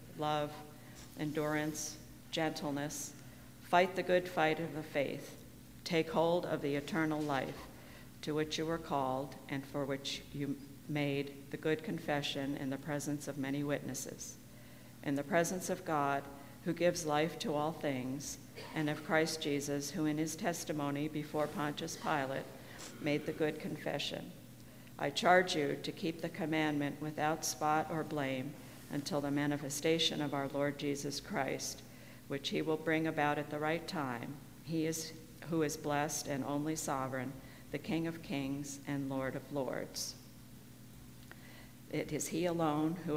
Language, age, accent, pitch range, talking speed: English, 50-69, American, 140-160 Hz, 155 wpm